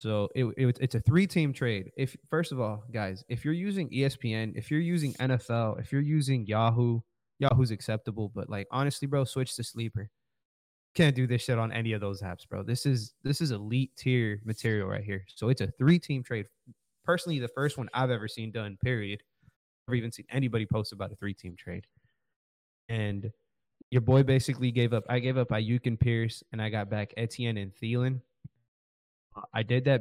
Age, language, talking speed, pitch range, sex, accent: 20-39, English, 195 wpm, 105-130 Hz, male, American